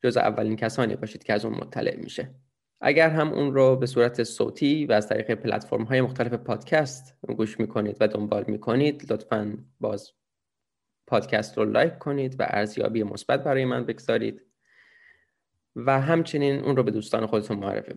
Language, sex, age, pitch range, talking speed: Persian, male, 20-39, 110-135 Hz, 160 wpm